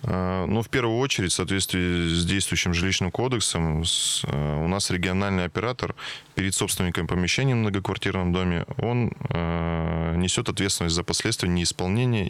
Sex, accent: male, native